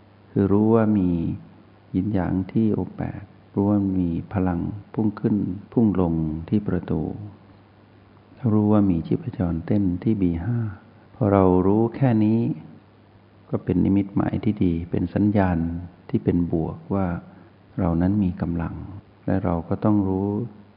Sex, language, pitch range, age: male, Thai, 90-105 Hz, 60-79